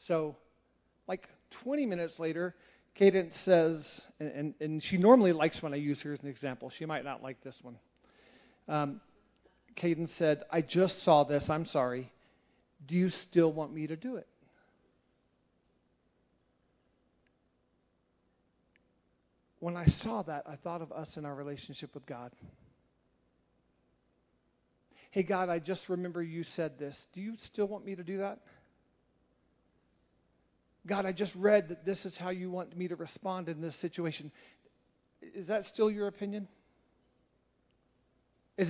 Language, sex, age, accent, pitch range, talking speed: English, male, 40-59, American, 125-190 Hz, 145 wpm